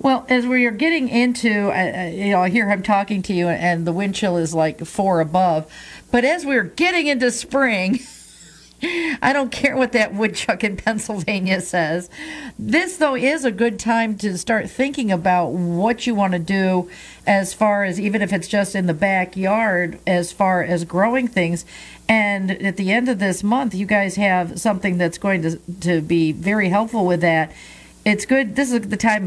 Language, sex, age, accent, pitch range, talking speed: English, female, 50-69, American, 170-220 Hz, 190 wpm